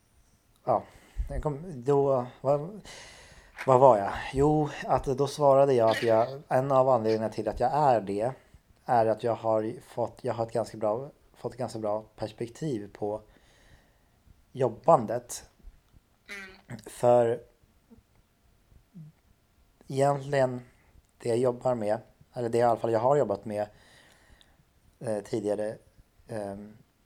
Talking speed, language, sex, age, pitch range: 120 wpm, Swedish, male, 30-49, 105-130 Hz